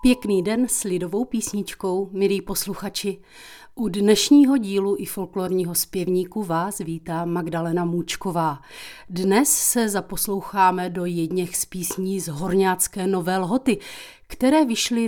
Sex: female